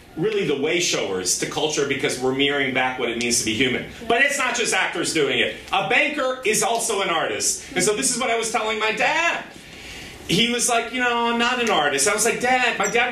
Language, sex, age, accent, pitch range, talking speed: English, male, 40-59, American, 165-245 Hz, 245 wpm